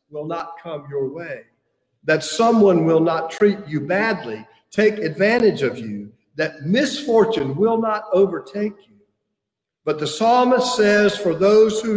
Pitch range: 155-220 Hz